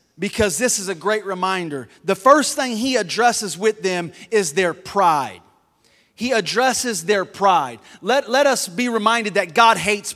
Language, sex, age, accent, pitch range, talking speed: English, male, 30-49, American, 190-250 Hz, 165 wpm